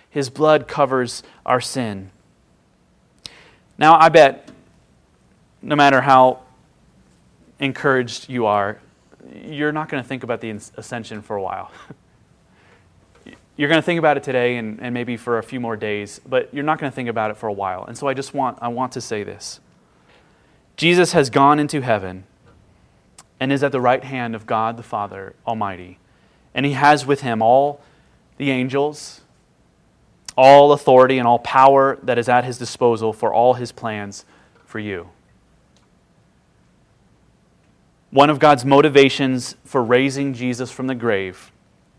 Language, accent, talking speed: English, American, 155 wpm